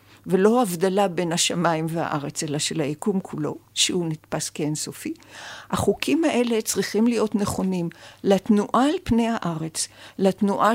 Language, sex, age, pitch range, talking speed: Hebrew, female, 50-69, 175-230 Hz, 125 wpm